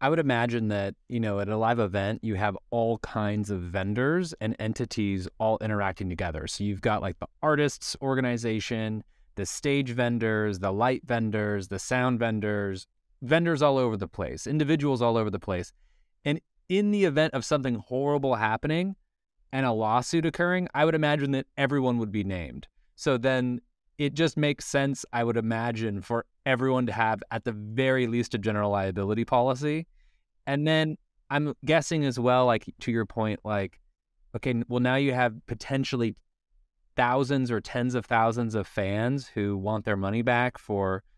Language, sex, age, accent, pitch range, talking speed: English, male, 20-39, American, 105-135 Hz, 170 wpm